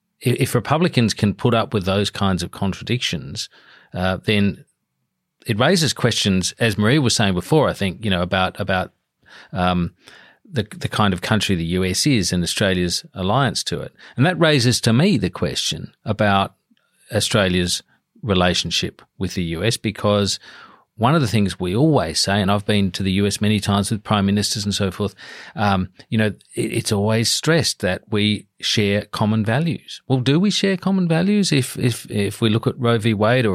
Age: 40-59